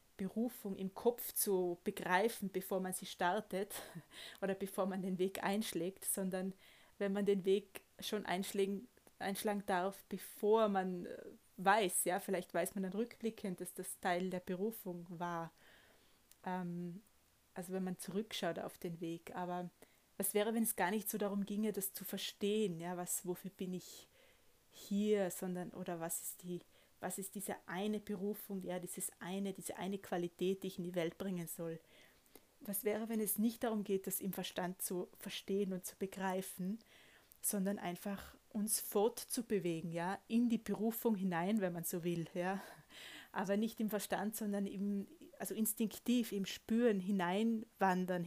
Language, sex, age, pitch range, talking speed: German, female, 20-39, 180-210 Hz, 160 wpm